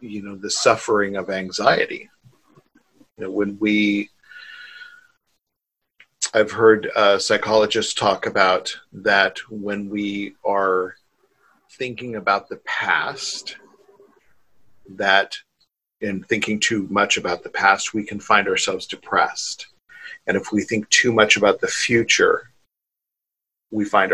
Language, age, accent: English, 50-69, American